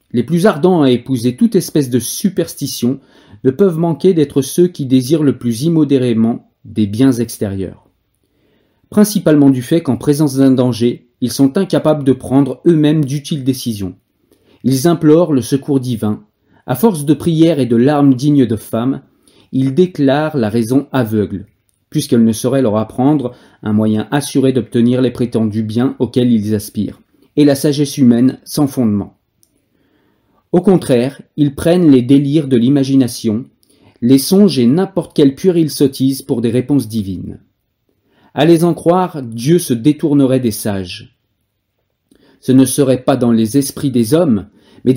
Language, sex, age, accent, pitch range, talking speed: French, male, 40-59, French, 120-150 Hz, 155 wpm